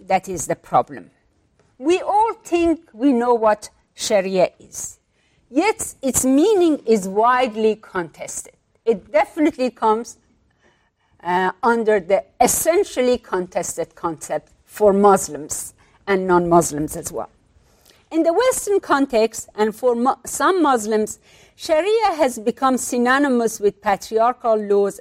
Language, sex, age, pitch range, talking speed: German, female, 50-69, 195-285 Hz, 115 wpm